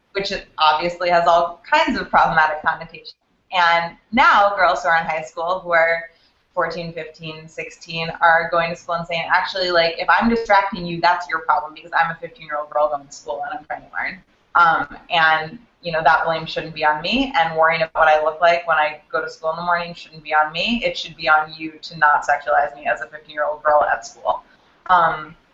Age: 20-39